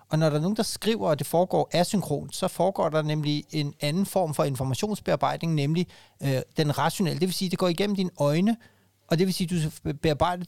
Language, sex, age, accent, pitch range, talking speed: Danish, male, 30-49, native, 140-170 Hz, 230 wpm